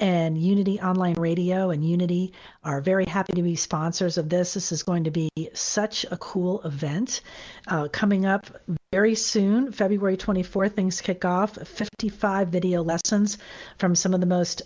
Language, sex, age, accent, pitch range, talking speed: English, female, 40-59, American, 175-210 Hz, 170 wpm